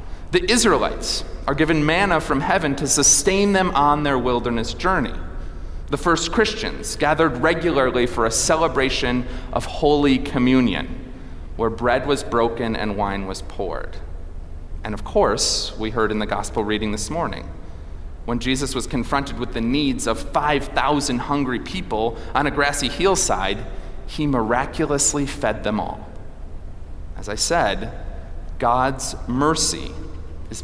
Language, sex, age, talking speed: English, male, 30-49, 135 wpm